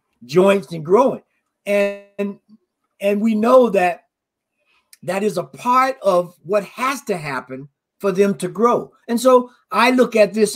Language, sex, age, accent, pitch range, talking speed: English, male, 50-69, American, 175-215 Hz, 155 wpm